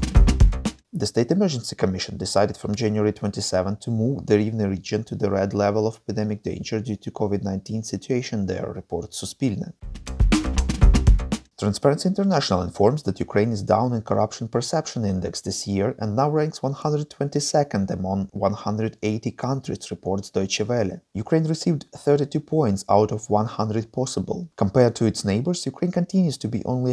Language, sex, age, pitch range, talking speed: English, male, 30-49, 100-140 Hz, 150 wpm